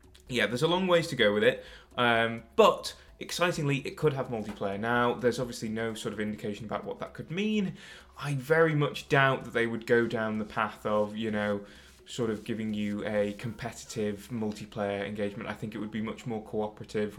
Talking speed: 205 wpm